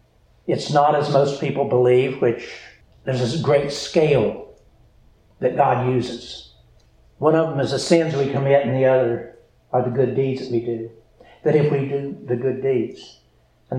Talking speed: 175 wpm